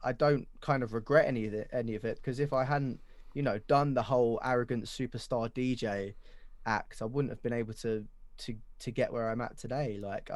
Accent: British